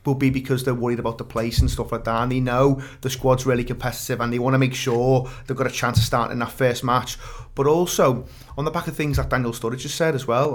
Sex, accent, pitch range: male, British, 125-145 Hz